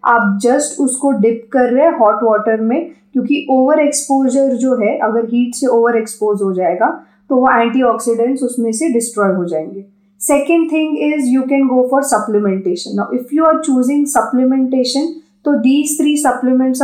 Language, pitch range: Hindi, 225-270 Hz